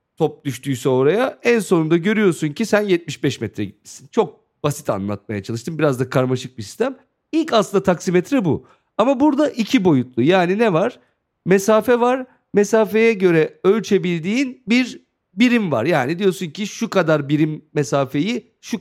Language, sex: Turkish, male